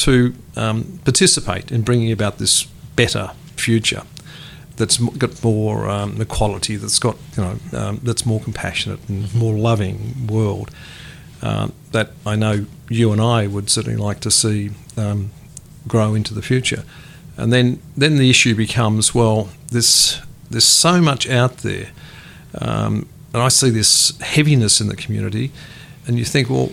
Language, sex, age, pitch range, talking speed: English, male, 50-69, 110-135 Hz, 155 wpm